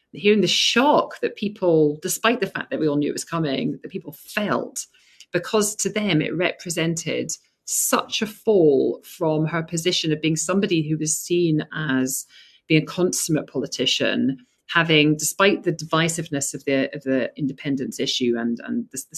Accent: British